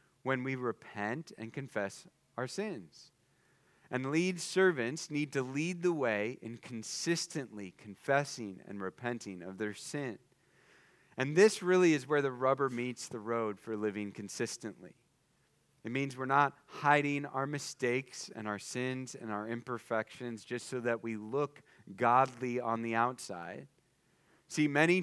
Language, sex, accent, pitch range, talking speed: English, male, American, 115-155 Hz, 145 wpm